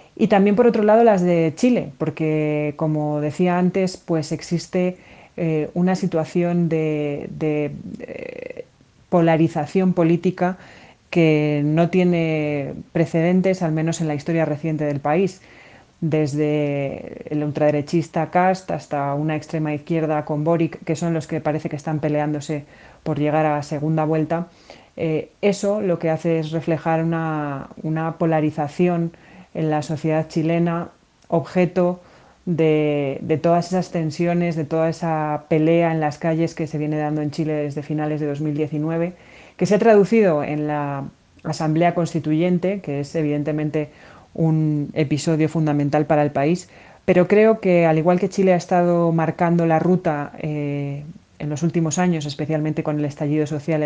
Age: 30-49